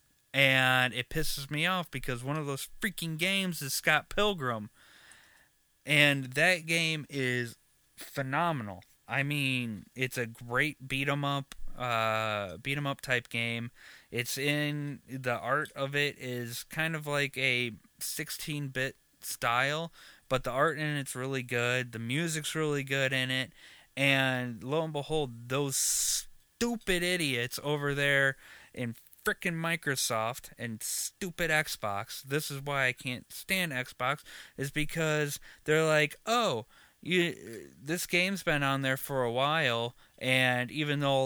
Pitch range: 125-155 Hz